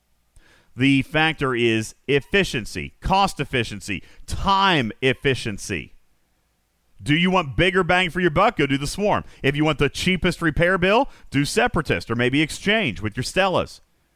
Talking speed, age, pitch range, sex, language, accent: 150 wpm, 40-59, 110-170 Hz, male, English, American